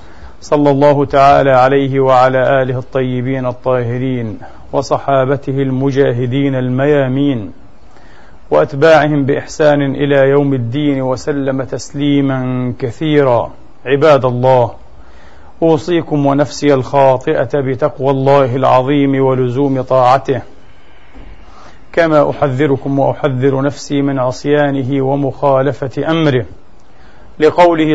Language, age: Arabic, 40-59